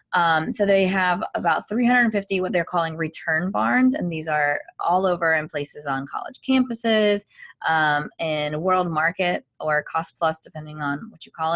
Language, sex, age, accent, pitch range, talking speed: English, female, 20-39, American, 155-195 Hz, 170 wpm